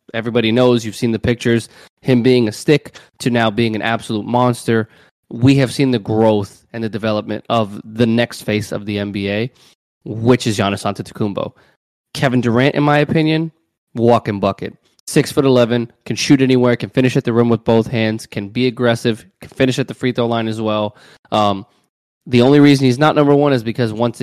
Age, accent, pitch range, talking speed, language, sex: 20-39, American, 110-125 Hz, 195 wpm, English, male